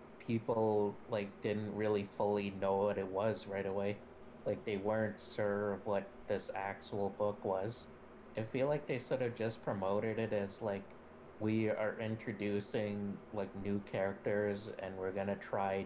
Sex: male